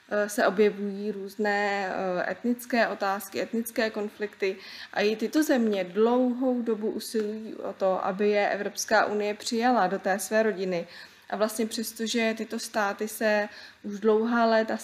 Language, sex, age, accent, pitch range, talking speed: Czech, female, 20-39, native, 205-235 Hz, 140 wpm